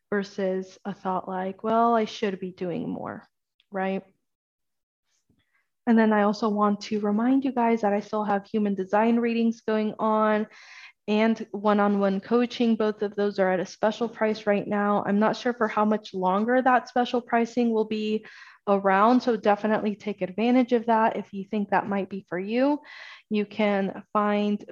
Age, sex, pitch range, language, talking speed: 20-39, female, 195-220 Hz, English, 175 wpm